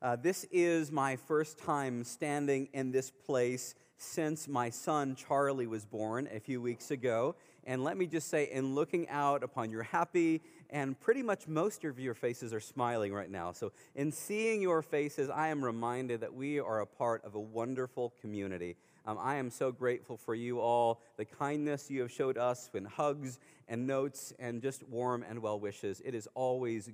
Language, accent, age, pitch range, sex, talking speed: English, American, 40-59, 120-150 Hz, male, 190 wpm